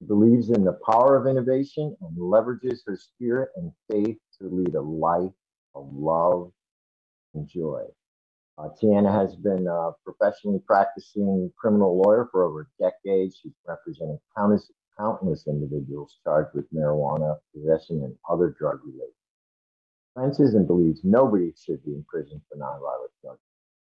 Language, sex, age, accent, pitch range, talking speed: English, male, 50-69, American, 85-125 Hz, 145 wpm